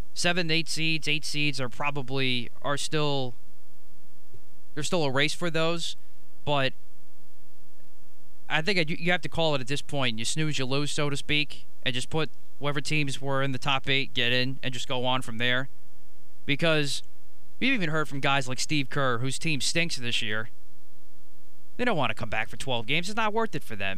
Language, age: English, 20-39